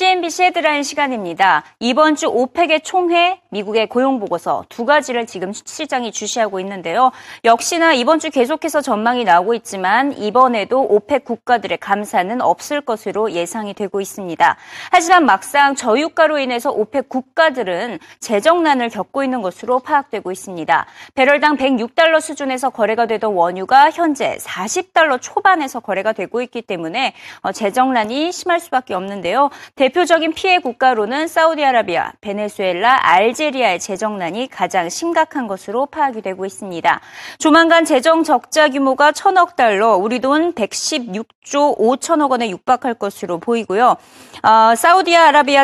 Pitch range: 210-295 Hz